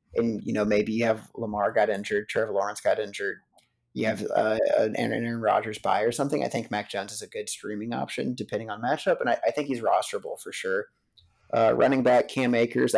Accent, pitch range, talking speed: American, 105-120 Hz, 220 wpm